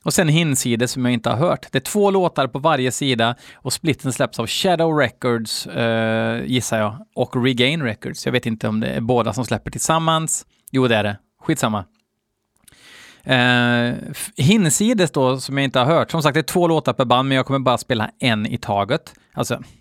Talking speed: 205 wpm